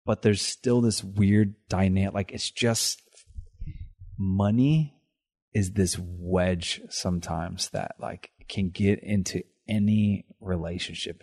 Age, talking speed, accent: 30-49, 110 wpm, American